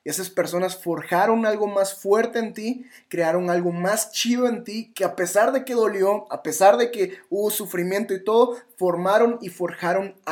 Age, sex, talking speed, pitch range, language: 20-39, male, 190 wpm, 175-215 Hz, Spanish